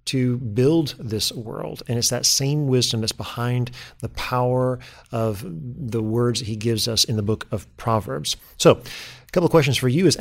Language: English